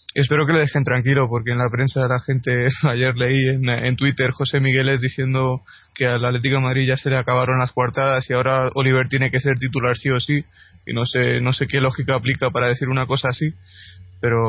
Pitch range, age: 125-135 Hz, 20-39